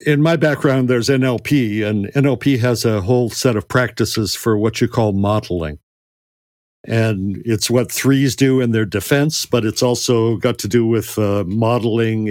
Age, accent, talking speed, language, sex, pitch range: 60-79, American, 170 wpm, English, male, 105-135 Hz